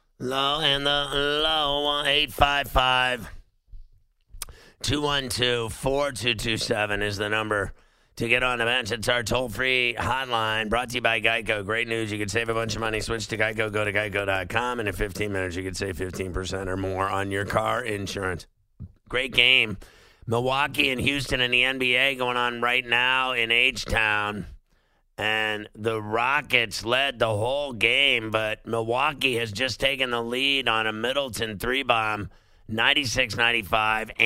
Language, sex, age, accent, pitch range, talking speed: English, male, 50-69, American, 105-125 Hz, 145 wpm